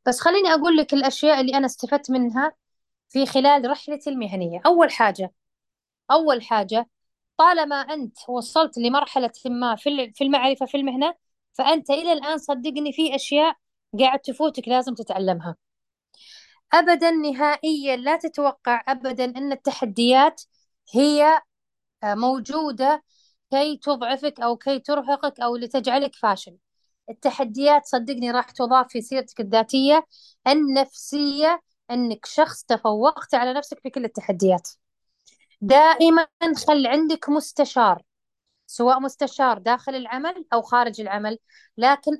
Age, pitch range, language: 20-39, 245-295 Hz, Arabic